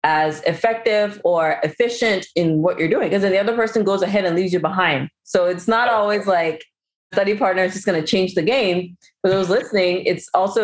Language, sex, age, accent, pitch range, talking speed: English, female, 30-49, American, 165-215 Hz, 215 wpm